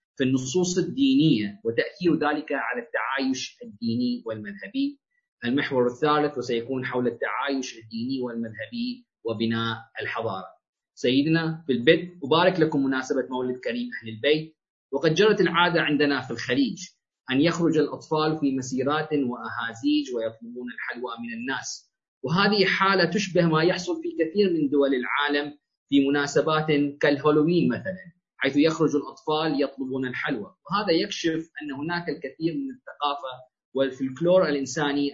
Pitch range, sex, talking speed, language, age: 135-180 Hz, male, 125 wpm, Arabic, 30-49